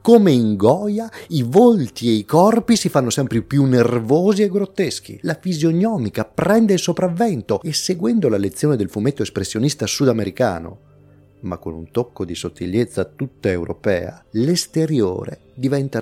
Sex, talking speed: male, 140 wpm